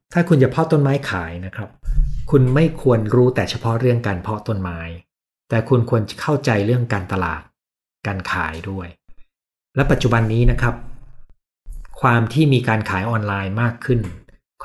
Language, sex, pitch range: Thai, male, 100-130 Hz